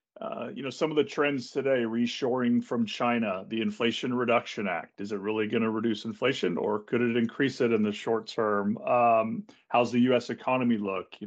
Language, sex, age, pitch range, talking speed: English, male, 40-59, 110-125 Hz, 200 wpm